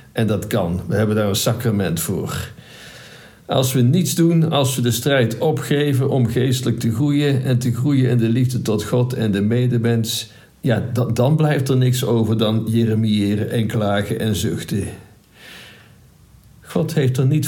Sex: male